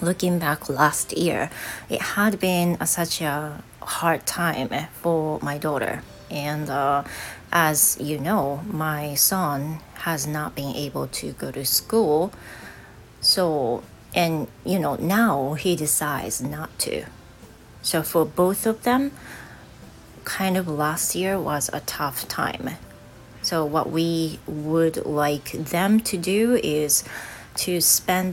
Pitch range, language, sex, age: 150-185 Hz, Japanese, female, 30-49